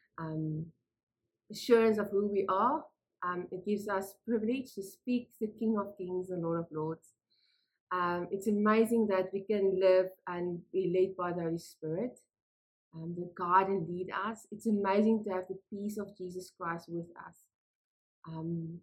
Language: English